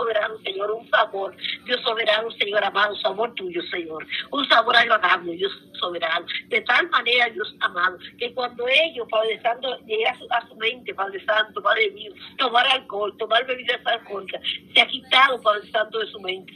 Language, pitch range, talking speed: Spanish, 205-260 Hz, 180 wpm